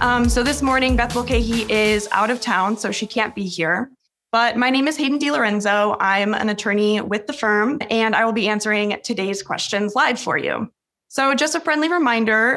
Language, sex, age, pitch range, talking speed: English, female, 20-39, 205-255 Hz, 200 wpm